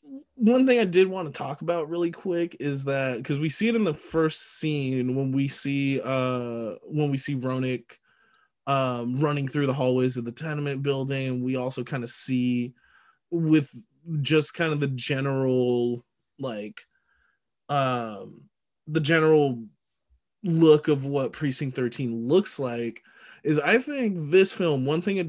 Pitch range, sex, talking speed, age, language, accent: 130-160 Hz, male, 160 wpm, 20-39, English, American